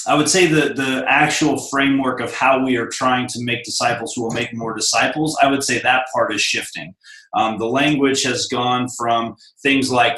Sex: male